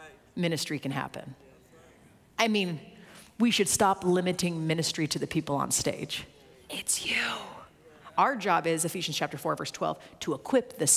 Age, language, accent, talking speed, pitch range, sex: 30-49, English, American, 155 wpm, 180-255 Hz, female